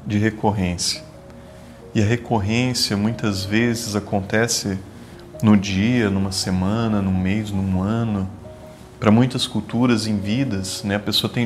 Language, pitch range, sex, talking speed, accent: Portuguese, 95-125 Hz, male, 135 wpm, Brazilian